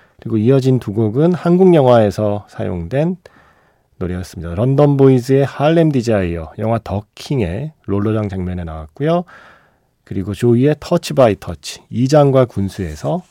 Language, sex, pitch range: Korean, male, 95-140 Hz